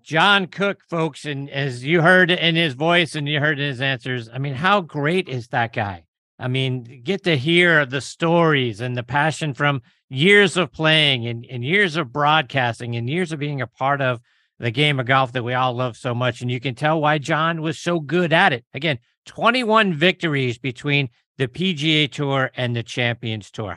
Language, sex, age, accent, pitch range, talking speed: English, male, 50-69, American, 130-170 Hz, 200 wpm